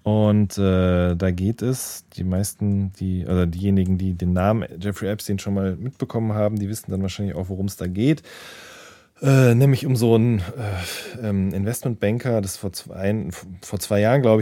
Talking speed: 180 wpm